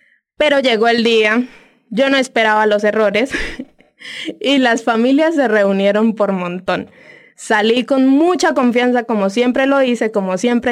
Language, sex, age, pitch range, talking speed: Spanish, female, 20-39, 220-275 Hz, 145 wpm